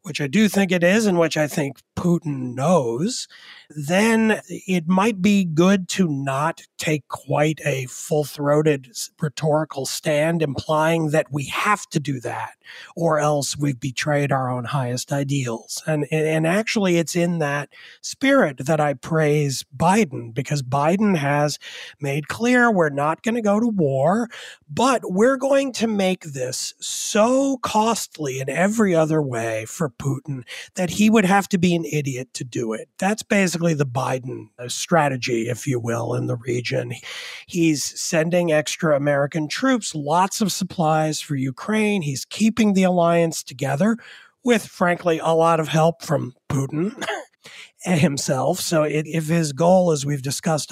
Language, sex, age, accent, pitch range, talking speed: English, male, 30-49, American, 140-190 Hz, 155 wpm